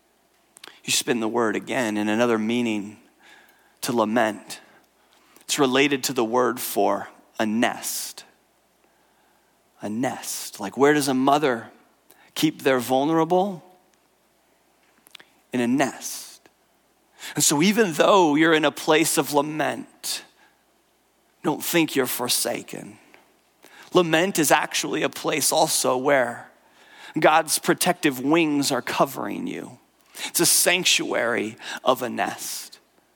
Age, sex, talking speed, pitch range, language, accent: 30-49, male, 115 wpm, 130-190 Hz, English, American